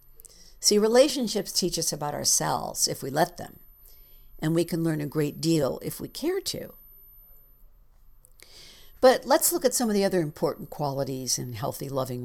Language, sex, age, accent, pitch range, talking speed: English, female, 60-79, American, 140-185 Hz, 165 wpm